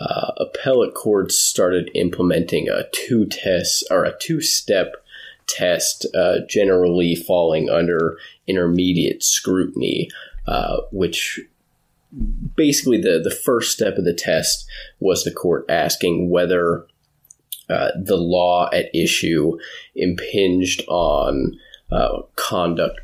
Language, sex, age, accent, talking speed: English, male, 20-39, American, 105 wpm